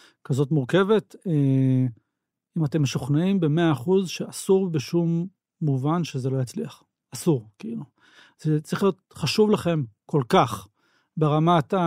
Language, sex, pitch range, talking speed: Hebrew, male, 135-165 Hz, 115 wpm